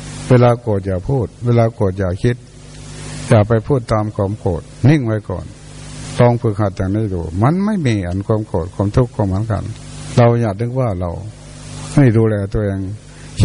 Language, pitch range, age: Thai, 115-145 Hz, 60-79